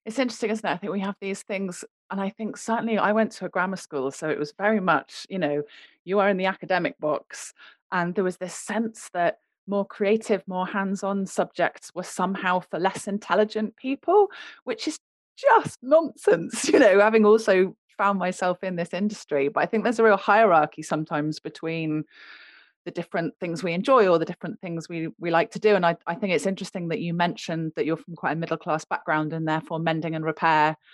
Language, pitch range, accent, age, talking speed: English, 165-205 Hz, British, 30-49, 210 wpm